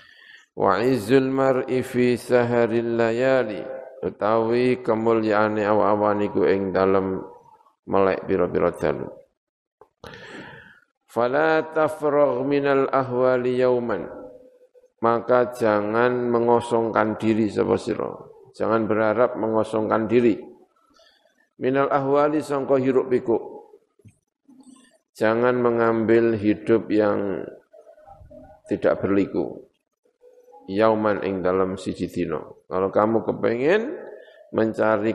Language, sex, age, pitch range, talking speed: Indonesian, male, 50-69, 105-145 Hz, 85 wpm